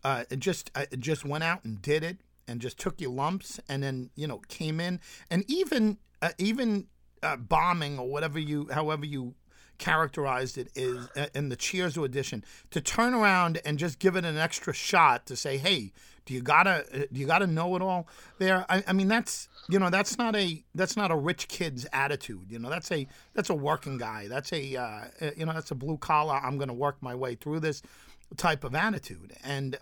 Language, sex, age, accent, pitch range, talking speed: English, male, 50-69, American, 135-185 Hz, 220 wpm